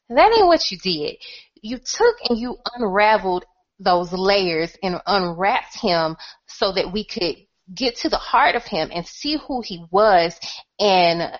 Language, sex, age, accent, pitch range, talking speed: English, female, 30-49, American, 175-260 Hz, 165 wpm